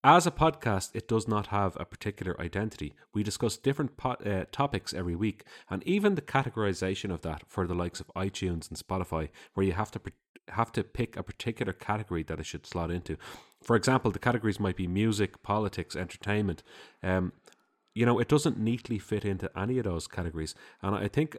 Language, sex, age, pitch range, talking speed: English, male, 30-49, 90-120 Hz, 195 wpm